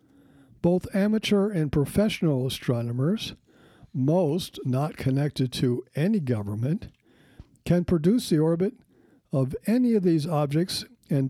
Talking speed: 110 wpm